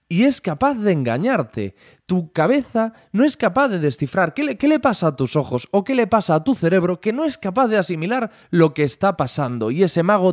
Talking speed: 230 wpm